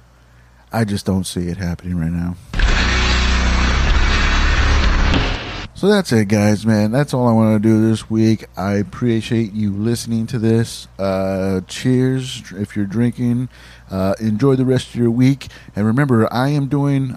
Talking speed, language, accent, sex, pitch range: 155 wpm, English, American, male, 95-115 Hz